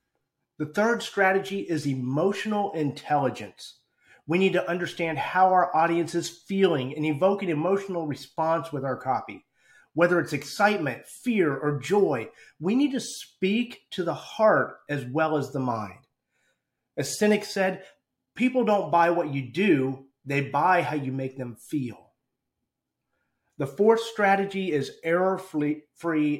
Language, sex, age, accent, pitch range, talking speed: English, male, 30-49, American, 140-185 Hz, 145 wpm